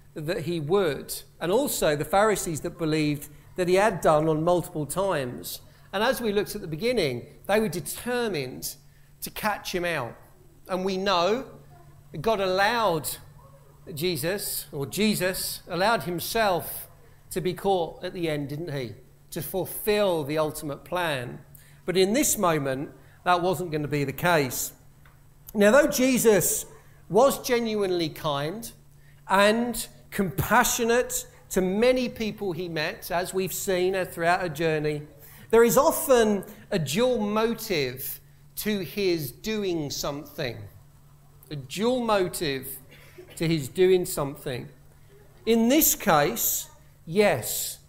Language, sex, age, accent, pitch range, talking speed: English, male, 50-69, British, 145-200 Hz, 135 wpm